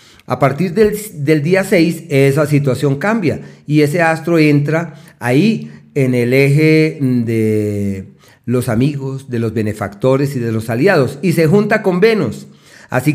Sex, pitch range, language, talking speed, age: male, 120-155 Hz, Spanish, 150 wpm, 40-59